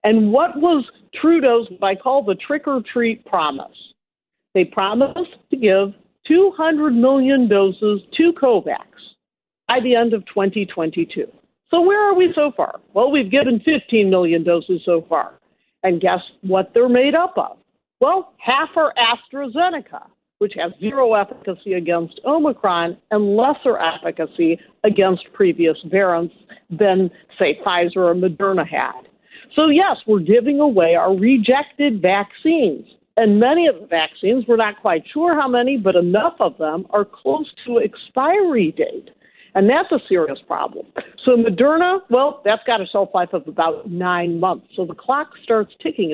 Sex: female